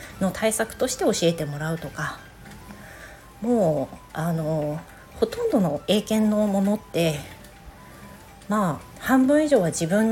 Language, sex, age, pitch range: Japanese, female, 40-59, 160-220 Hz